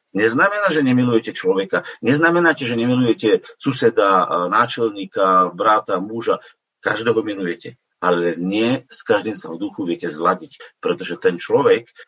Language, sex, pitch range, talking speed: Slovak, male, 115-160 Hz, 125 wpm